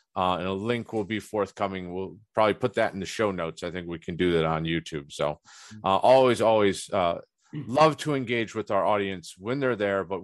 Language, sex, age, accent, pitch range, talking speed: English, male, 40-59, American, 100-125 Hz, 225 wpm